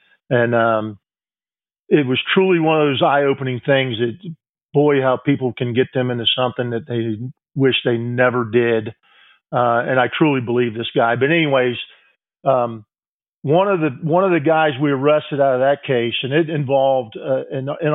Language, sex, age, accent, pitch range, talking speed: English, male, 50-69, American, 120-145 Hz, 185 wpm